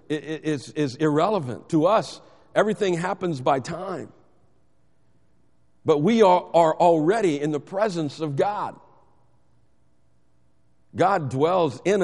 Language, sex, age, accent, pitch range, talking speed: English, male, 50-69, American, 115-185 Hz, 110 wpm